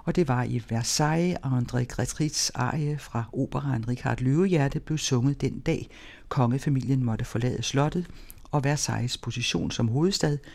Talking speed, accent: 150 wpm, native